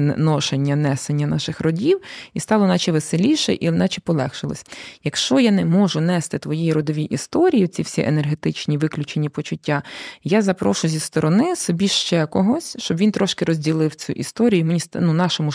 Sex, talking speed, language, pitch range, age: female, 160 wpm, Ukrainian, 155-205 Hz, 20-39